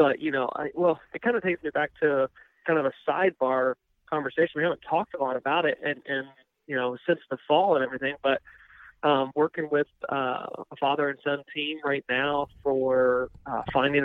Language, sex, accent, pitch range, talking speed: English, male, American, 135-165 Hz, 205 wpm